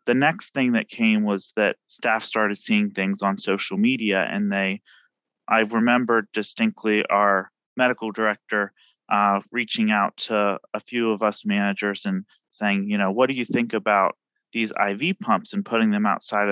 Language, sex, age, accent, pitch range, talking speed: English, male, 30-49, American, 100-125 Hz, 170 wpm